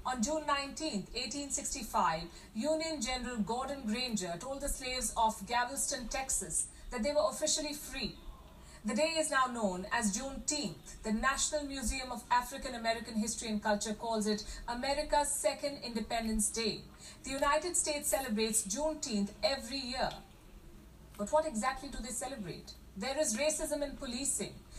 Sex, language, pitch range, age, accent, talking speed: female, English, 220-295 Hz, 50-69, Indian, 145 wpm